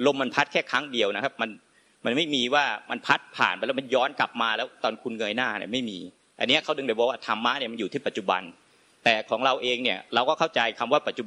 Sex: male